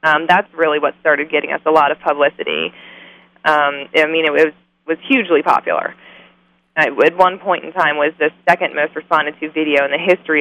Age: 20-39